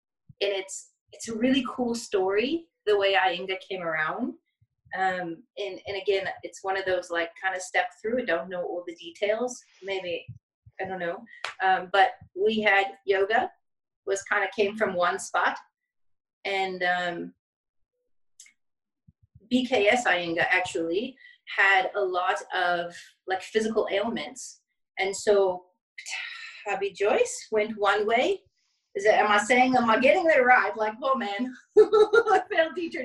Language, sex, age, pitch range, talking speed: English, female, 30-49, 180-255 Hz, 150 wpm